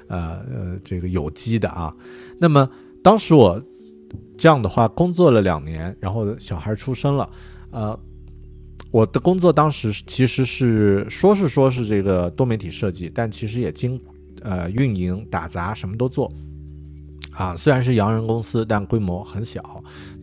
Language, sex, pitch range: Chinese, male, 85-115 Hz